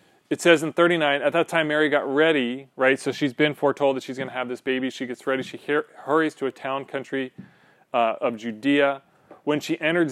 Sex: male